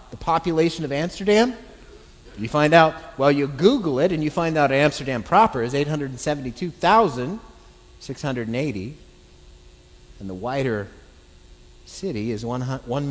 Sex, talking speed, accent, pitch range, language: male, 115 wpm, American, 110-175 Hz, English